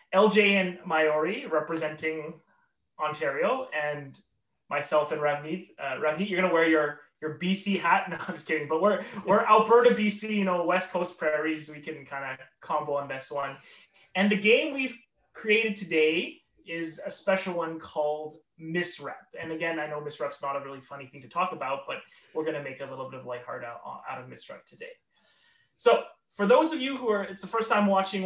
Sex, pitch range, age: male, 155-200 Hz, 20-39